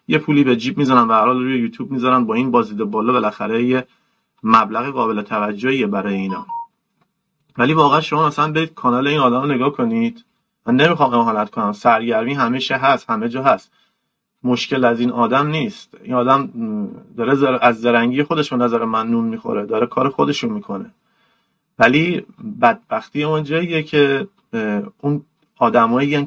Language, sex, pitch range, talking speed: Persian, male, 130-205 Hz, 150 wpm